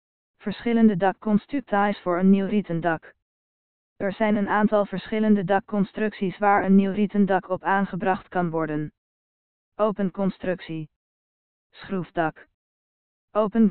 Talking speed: 105 wpm